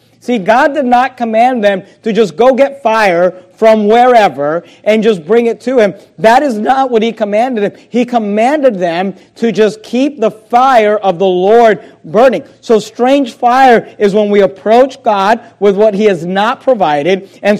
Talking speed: 180 wpm